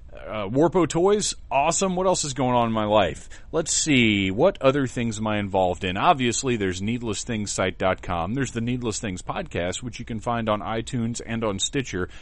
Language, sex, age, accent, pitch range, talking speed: English, male, 30-49, American, 100-150 Hz, 185 wpm